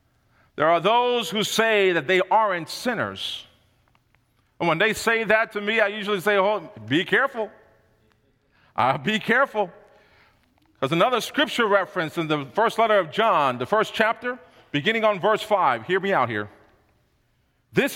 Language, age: English, 40-59